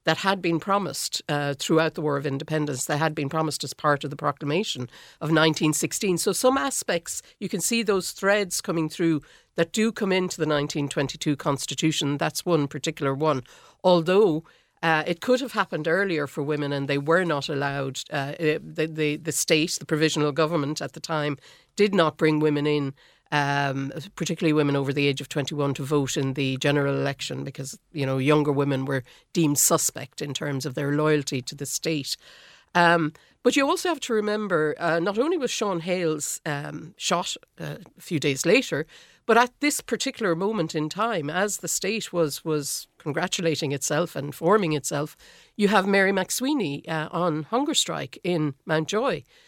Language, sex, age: English, female, 60-79